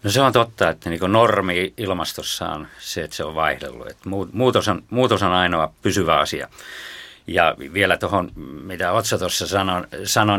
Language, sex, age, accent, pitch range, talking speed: Finnish, male, 50-69, native, 90-110 Hz, 160 wpm